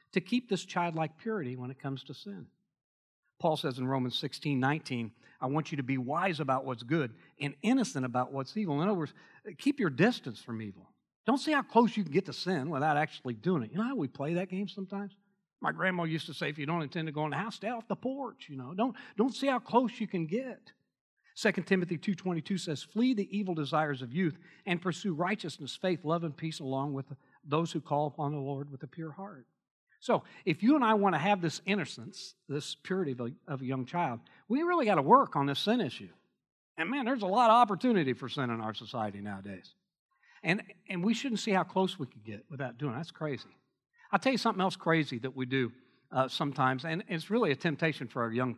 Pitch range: 130-195 Hz